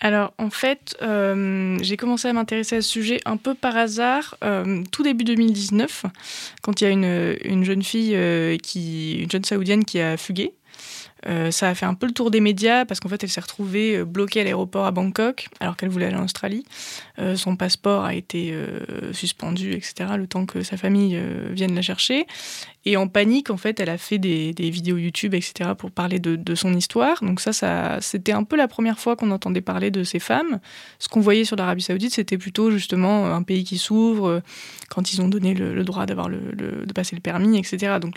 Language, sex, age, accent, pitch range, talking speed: French, female, 20-39, French, 185-220 Hz, 220 wpm